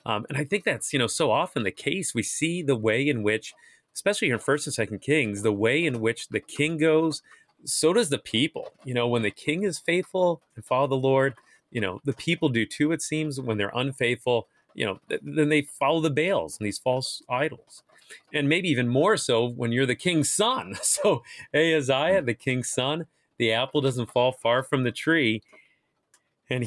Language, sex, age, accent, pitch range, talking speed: English, male, 30-49, American, 115-155 Hz, 210 wpm